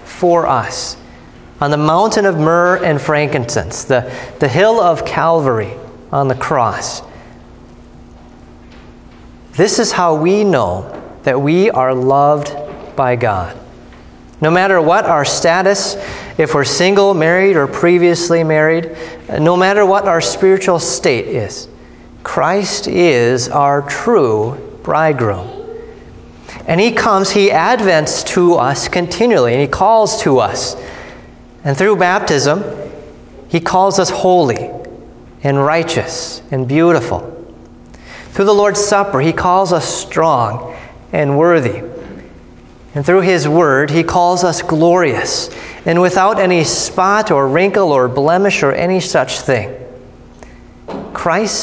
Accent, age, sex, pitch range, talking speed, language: American, 30-49, male, 135-190 Hz, 125 wpm, English